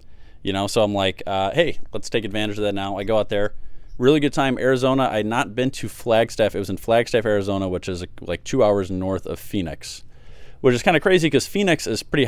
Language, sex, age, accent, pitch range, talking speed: English, male, 30-49, American, 95-115 Hz, 240 wpm